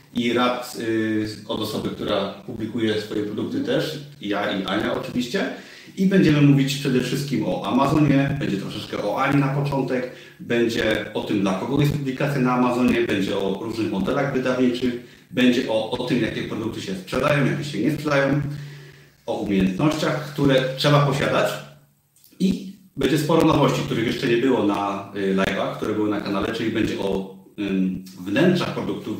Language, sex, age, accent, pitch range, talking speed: Polish, male, 40-59, native, 110-145 Hz, 155 wpm